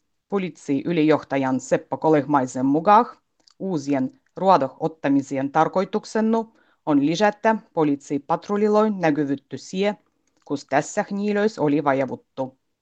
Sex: female